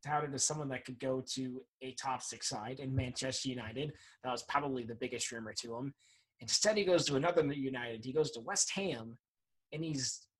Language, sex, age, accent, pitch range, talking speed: English, male, 20-39, American, 125-170 Hz, 195 wpm